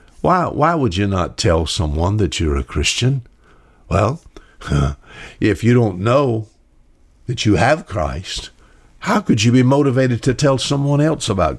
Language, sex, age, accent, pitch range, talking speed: English, male, 60-79, American, 95-135 Hz, 155 wpm